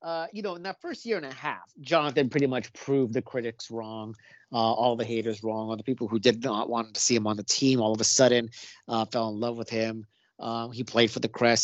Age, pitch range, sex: 30-49, 120-150 Hz, male